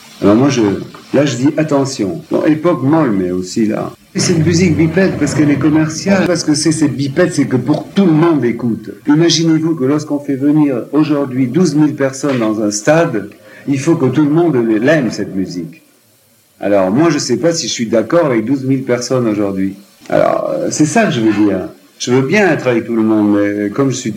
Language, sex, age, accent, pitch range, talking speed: French, male, 50-69, French, 115-160 Hz, 215 wpm